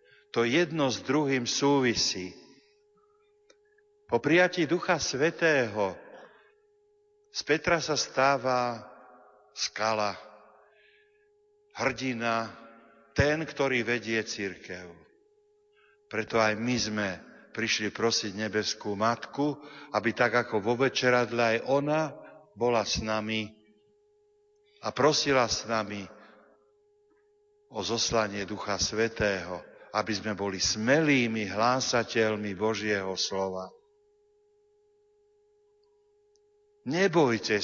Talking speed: 85 wpm